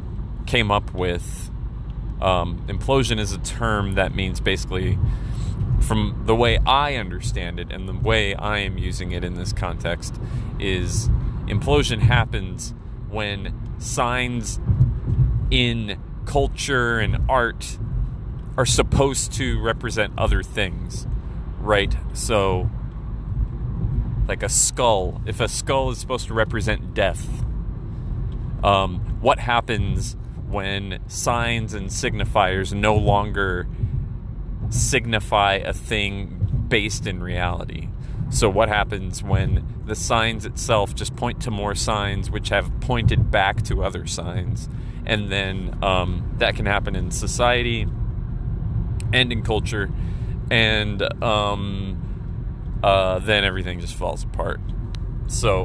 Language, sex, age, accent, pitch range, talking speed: English, male, 30-49, American, 100-115 Hz, 120 wpm